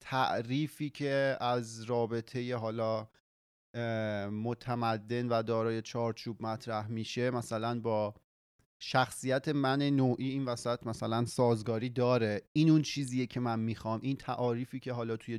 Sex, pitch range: male, 115-135 Hz